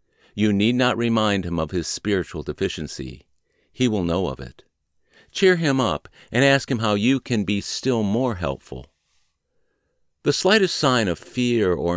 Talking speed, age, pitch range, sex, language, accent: 165 wpm, 50-69, 85-120 Hz, male, English, American